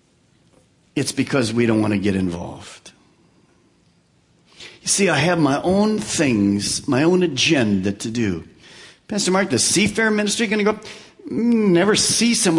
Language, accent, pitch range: English, American, 130-205 Hz